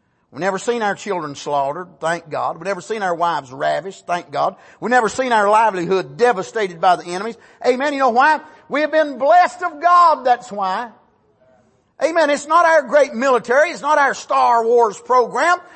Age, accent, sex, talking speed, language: 50-69, American, male, 185 wpm, English